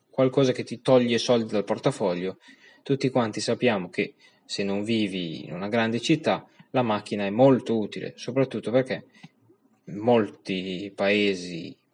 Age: 20-39